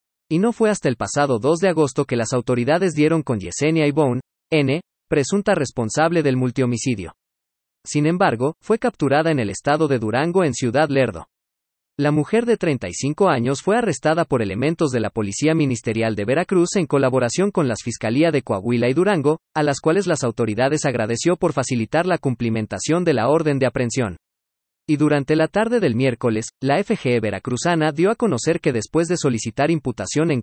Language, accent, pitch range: Spanish, Mexican, 120-160 Hz